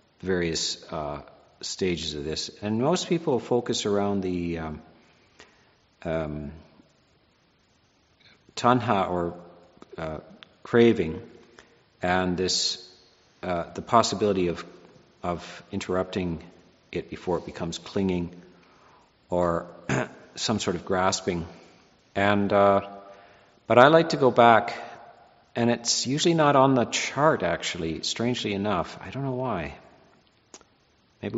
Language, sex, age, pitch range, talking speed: English, male, 50-69, 90-115 Hz, 110 wpm